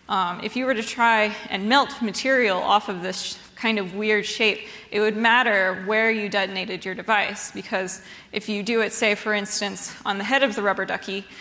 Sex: female